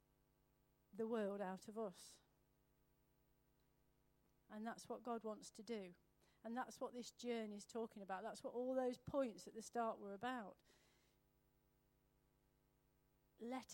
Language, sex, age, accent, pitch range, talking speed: English, female, 40-59, British, 160-235 Hz, 135 wpm